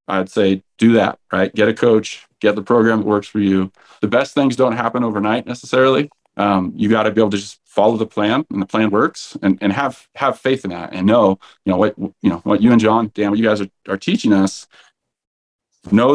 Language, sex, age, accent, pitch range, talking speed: English, male, 30-49, American, 95-115 Hz, 240 wpm